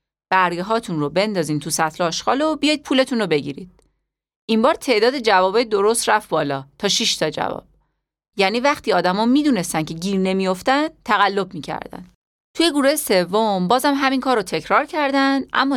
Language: Persian